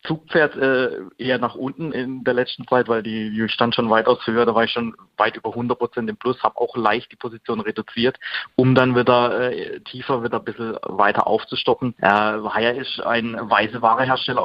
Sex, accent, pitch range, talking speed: male, German, 115-130 Hz, 205 wpm